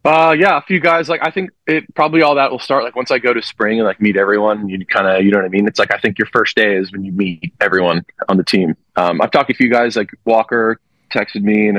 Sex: male